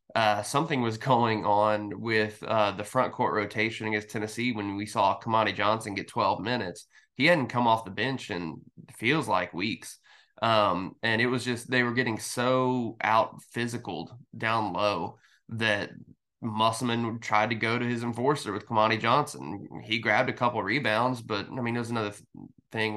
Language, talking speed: English, 180 wpm